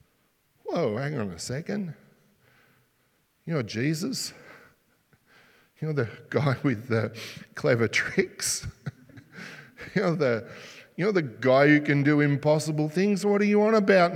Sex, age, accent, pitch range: male, 50-69, Australian, 120-160 Hz